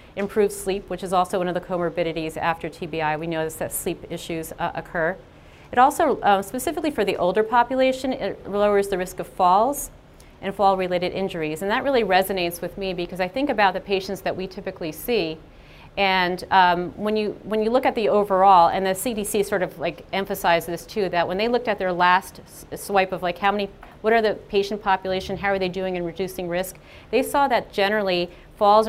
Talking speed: 210 wpm